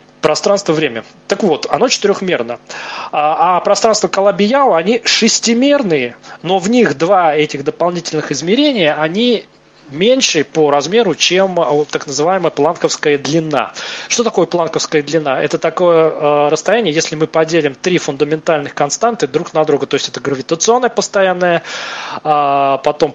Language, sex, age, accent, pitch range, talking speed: Russian, male, 20-39, native, 150-185 Hz, 135 wpm